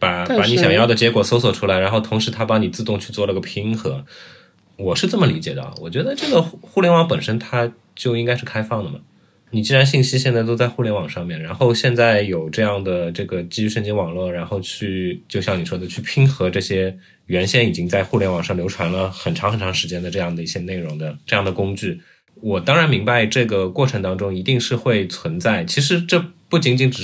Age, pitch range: 20-39, 90-120 Hz